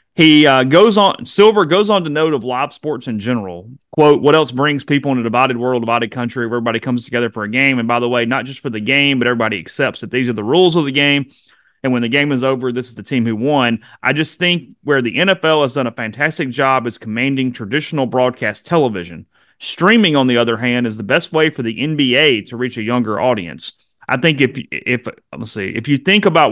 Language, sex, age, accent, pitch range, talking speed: English, male, 30-49, American, 120-150 Hz, 240 wpm